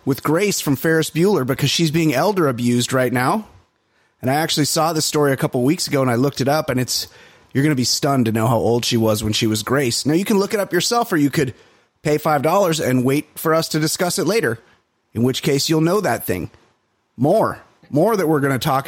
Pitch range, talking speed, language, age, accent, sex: 115-155 Hz, 245 wpm, English, 30-49, American, male